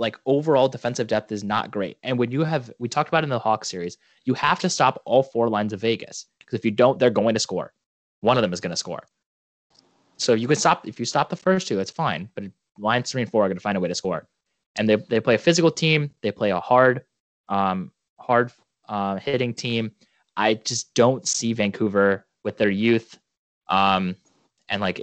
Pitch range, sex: 100-125 Hz, male